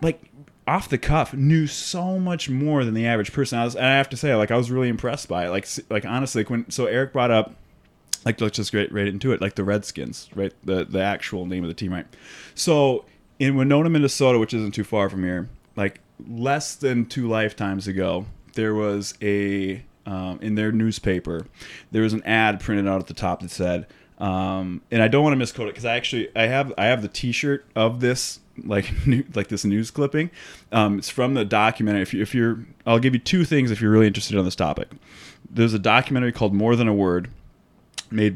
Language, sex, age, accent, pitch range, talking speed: English, male, 20-39, American, 100-125 Hz, 220 wpm